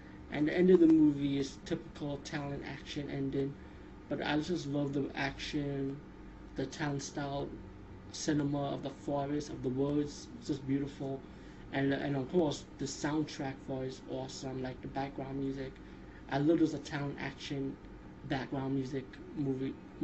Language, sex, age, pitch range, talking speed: English, male, 20-39, 130-150 Hz, 155 wpm